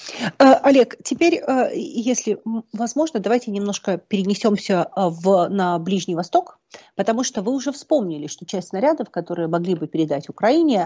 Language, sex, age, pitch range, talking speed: Russian, female, 40-59, 175-245 Hz, 125 wpm